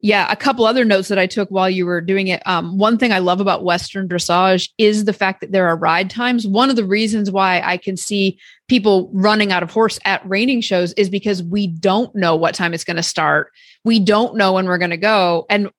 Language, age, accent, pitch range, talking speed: English, 30-49, American, 190-230 Hz, 245 wpm